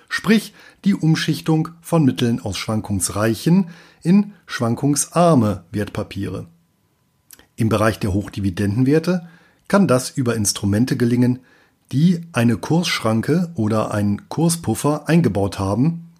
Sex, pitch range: male, 110-160 Hz